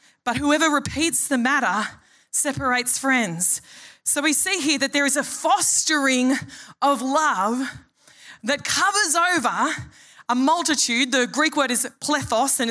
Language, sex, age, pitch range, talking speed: English, female, 20-39, 240-300 Hz, 135 wpm